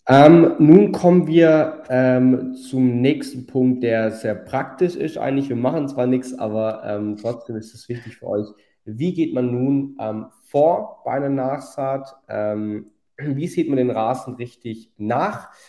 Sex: male